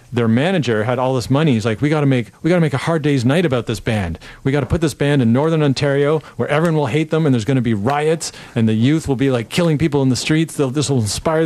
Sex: male